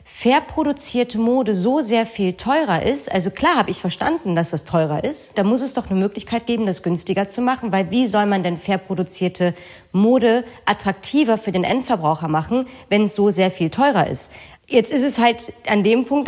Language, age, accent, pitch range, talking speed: German, 30-49, German, 180-225 Hz, 205 wpm